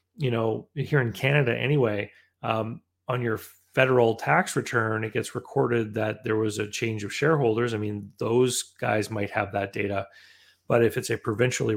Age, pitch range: 30-49, 110-130 Hz